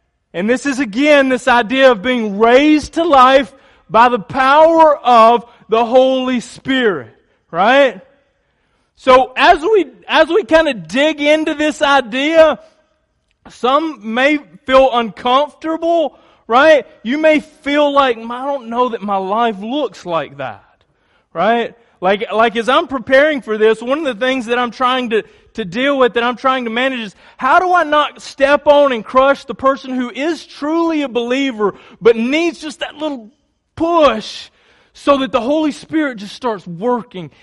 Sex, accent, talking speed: male, American, 165 wpm